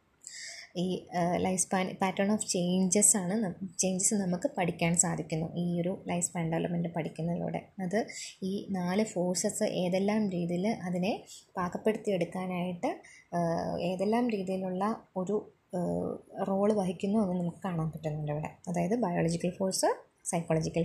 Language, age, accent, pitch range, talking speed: Malayalam, 20-39, native, 180-220 Hz, 105 wpm